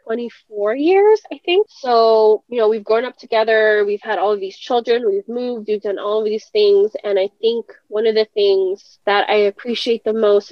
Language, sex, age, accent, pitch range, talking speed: English, female, 20-39, American, 195-240 Hz, 215 wpm